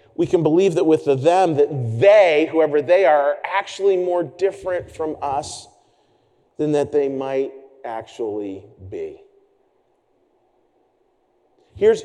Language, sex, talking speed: English, male, 125 wpm